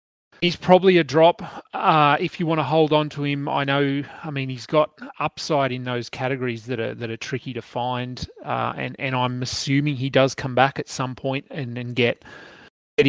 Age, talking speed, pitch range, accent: 30-49, 210 wpm, 115-145 Hz, Australian